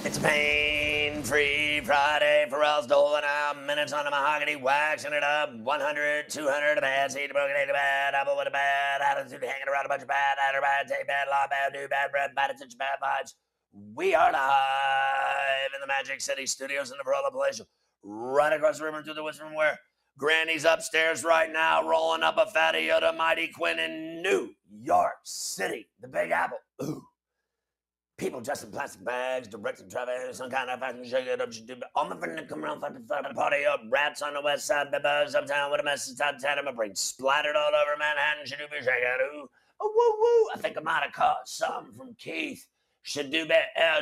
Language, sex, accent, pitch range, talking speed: English, male, American, 140-160 Hz, 195 wpm